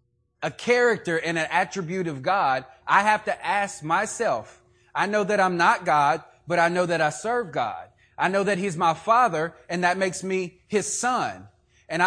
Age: 30-49